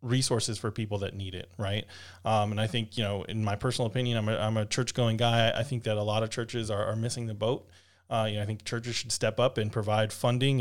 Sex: male